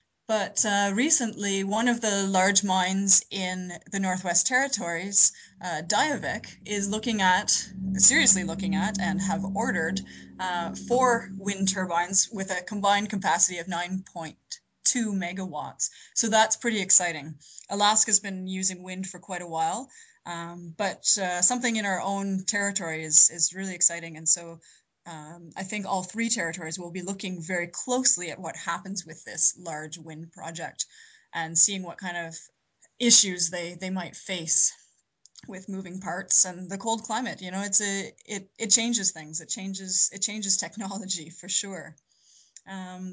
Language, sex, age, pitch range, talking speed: English, female, 20-39, 175-205 Hz, 155 wpm